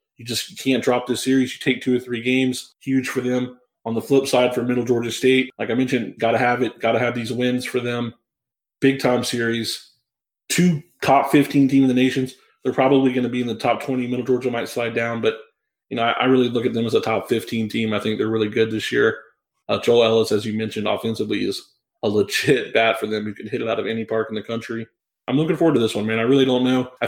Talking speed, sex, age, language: 260 wpm, male, 20-39, English